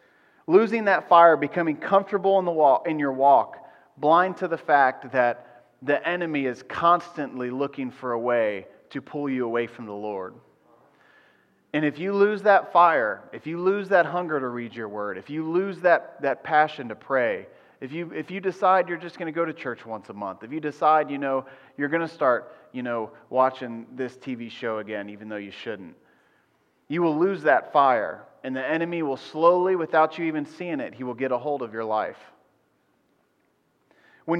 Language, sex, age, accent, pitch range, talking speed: English, male, 30-49, American, 130-175 Hz, 195 wpm